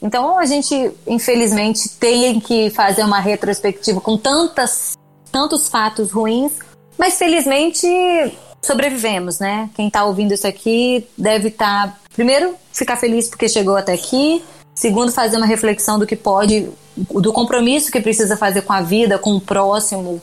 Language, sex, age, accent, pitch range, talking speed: Portuguese, female, 20-39, Brazilian, 195-245 Hz, 150 wpm